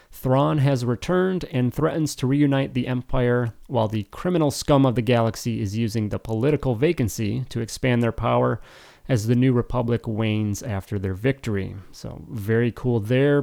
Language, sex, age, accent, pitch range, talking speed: English, male, 30-49, American, 110-135 Hz, 165 wpm